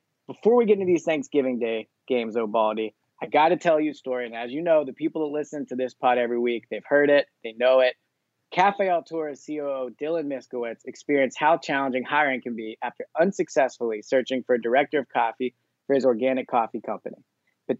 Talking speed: 205 wpm